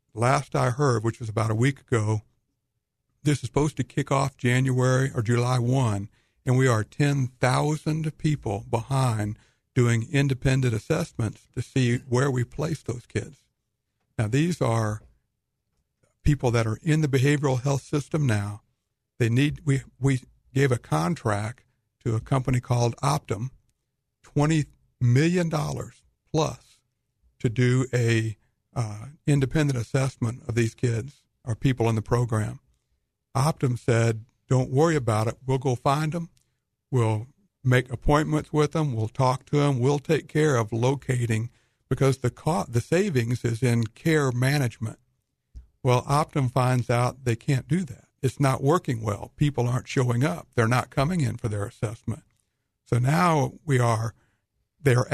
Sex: male